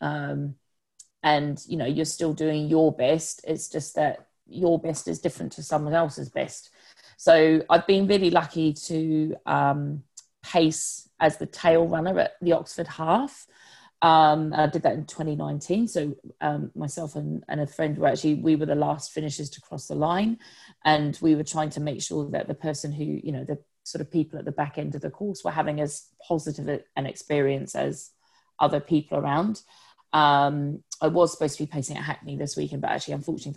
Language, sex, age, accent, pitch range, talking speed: English, female, 30-49, British, 145-165 Hz, 195 wpm